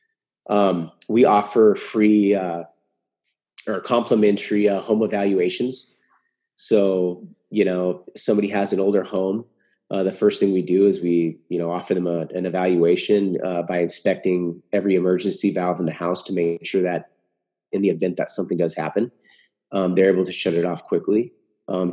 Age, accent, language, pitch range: 30-49, American, English, 90-105 Hz